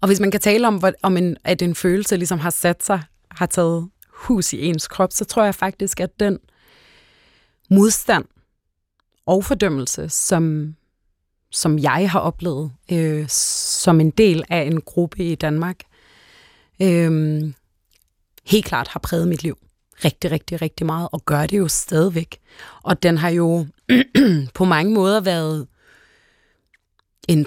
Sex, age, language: female, 30-49, Danish